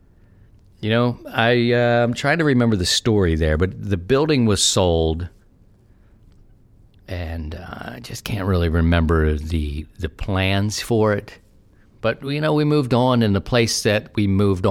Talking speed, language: 165 wpm, English